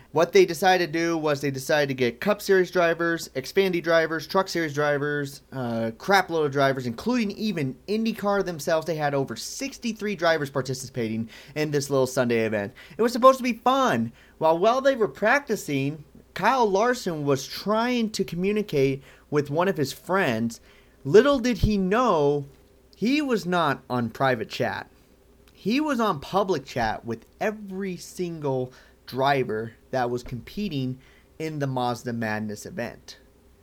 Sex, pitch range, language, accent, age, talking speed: male, 120-175 Hz, English, American, 30-49, 155 wpm